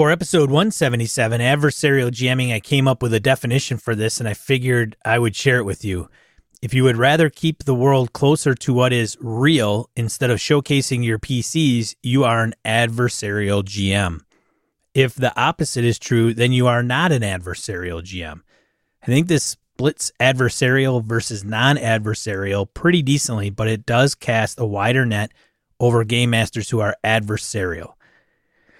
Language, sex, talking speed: English, male, 165 wpm